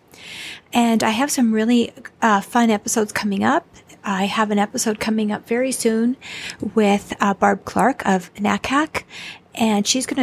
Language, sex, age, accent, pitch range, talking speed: English, female, 50-69, American, 200-235 Hz, 160 wpm